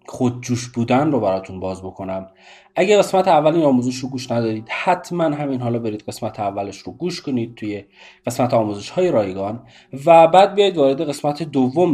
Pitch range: 125-185 Hz